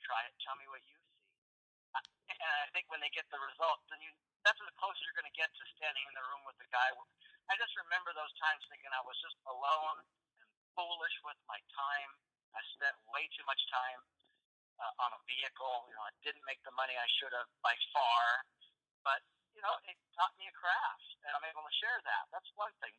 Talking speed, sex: 225 wpm, male